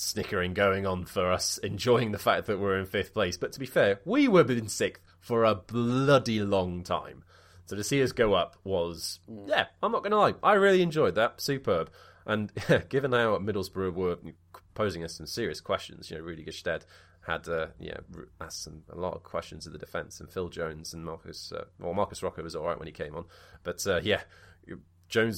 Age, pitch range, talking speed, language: 20-39, 85-100 Hz, 215 wpm, English